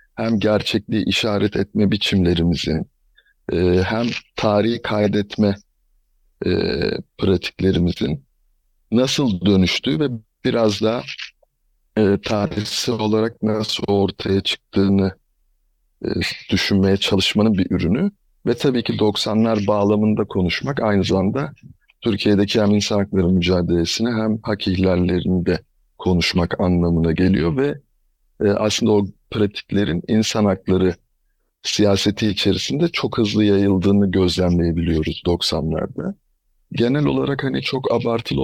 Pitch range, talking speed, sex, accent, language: 90-110 Hz, 100 wpm, male, native, Turkish